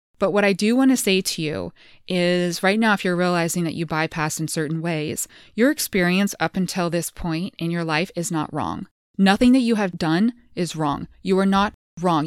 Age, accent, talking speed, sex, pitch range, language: 20-39, American, 215 wpm, female, 160-195 Hz, English